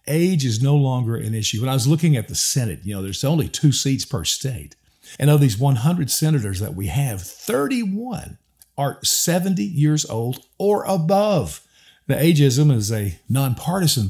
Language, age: English, 50-69